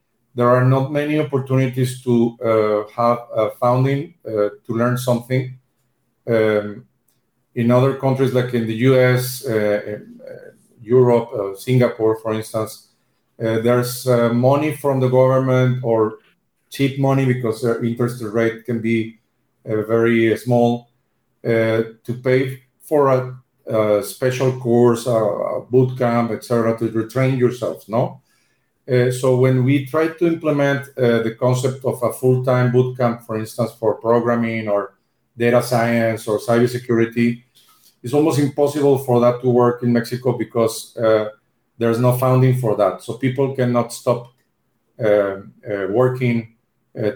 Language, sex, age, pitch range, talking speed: English, male, 50-69, 115-130 Hz, 145 wpm